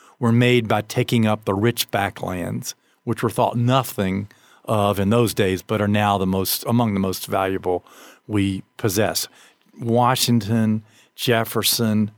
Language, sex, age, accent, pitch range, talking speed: English, male, 50-69, American, 105-135 Hz, 145 wpm